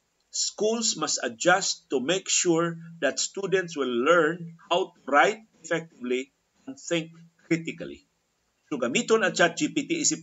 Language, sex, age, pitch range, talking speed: Filipino, male, 50-69, 140-185 Hz, 130 wpm